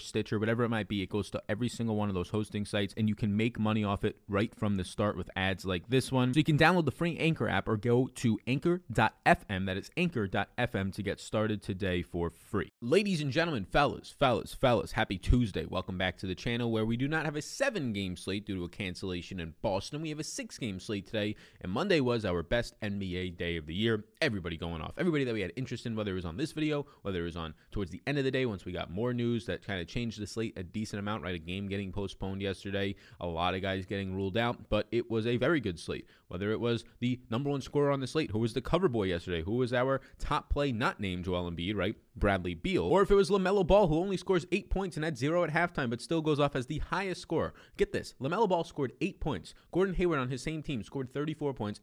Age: 20-39